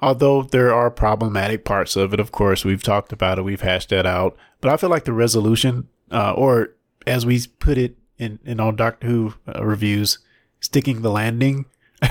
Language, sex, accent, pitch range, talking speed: English, male, American, 100-130 Hz, 190 wpm